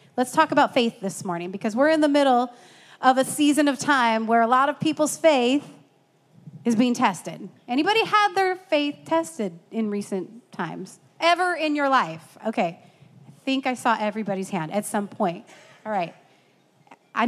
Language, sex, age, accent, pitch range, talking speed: English, female, 30-49, American, 205-290 Hz, 175 wpm